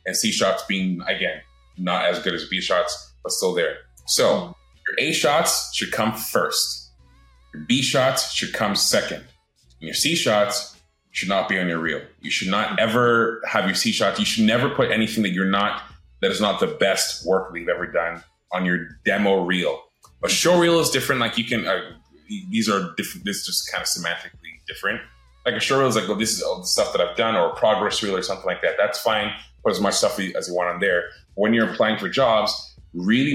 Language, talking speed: English, 225 wpm